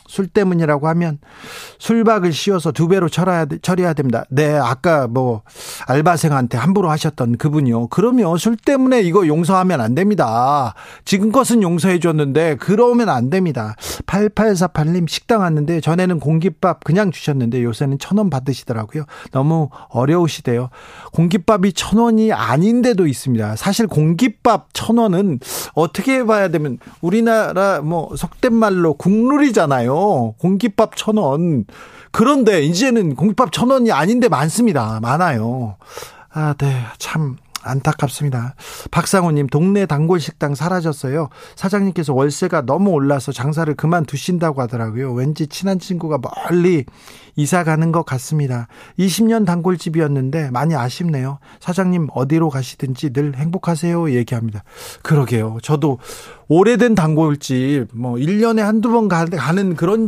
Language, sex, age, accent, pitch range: Korean, male, 40-59, native, 140-195 Hz